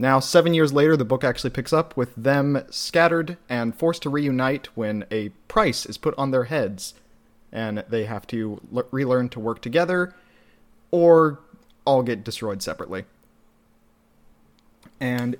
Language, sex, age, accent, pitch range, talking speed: English, male, 30-49, American, 110-140 Hz, 150 wpm